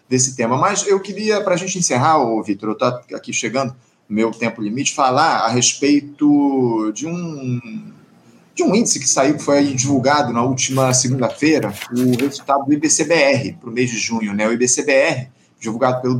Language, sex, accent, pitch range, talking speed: Portuguese, male, Brazilian, 125-170 Hz, 185 wpm